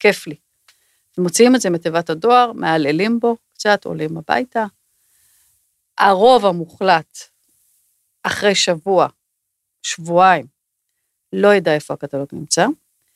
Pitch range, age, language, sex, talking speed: 160-200 Hz, 40-59, Hebrew, female, 100 wpm